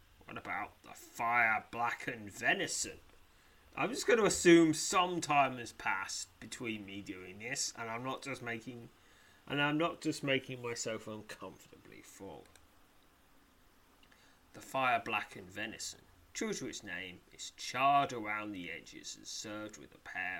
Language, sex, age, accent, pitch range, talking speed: English, male, 30-49, British, 100-150 Hz, 145 wpm